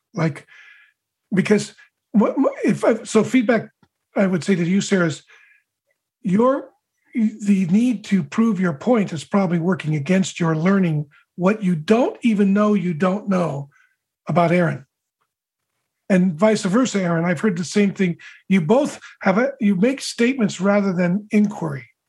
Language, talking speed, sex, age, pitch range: English, 150 wpm, male, 50-69, 180-215 Hz